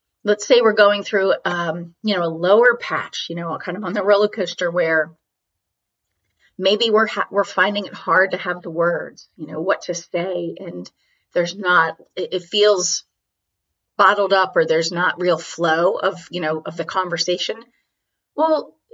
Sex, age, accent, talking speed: female, 30-49, American, 175 wpm